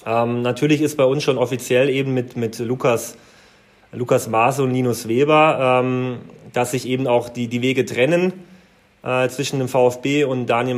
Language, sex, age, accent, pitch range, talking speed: German, male, 20-39, German, 115-145 Hz, 175 wpm